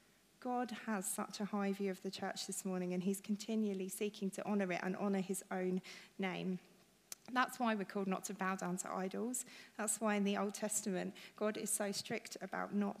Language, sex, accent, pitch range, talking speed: English, female, British, 195-215 Hz, 210 wpm